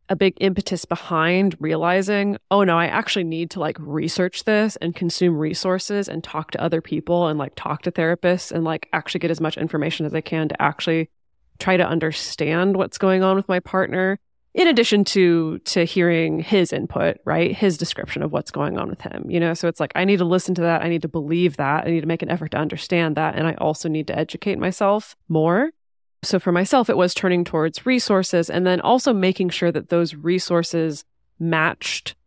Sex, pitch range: female, 160-185 Hz